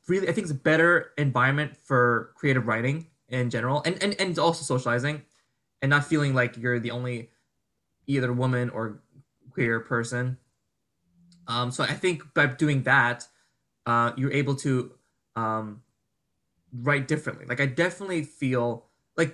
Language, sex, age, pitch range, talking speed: English, male, 20-39, 125-155 Hz, 150 wpm